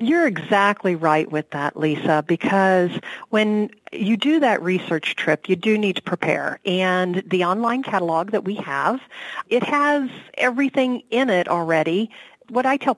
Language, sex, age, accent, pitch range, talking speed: English, female, 50-69, American, 185-250 Hz, 155 wpm